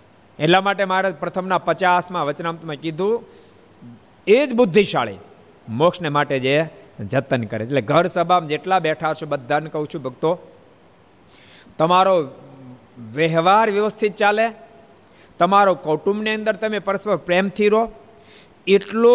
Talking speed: 120 wpm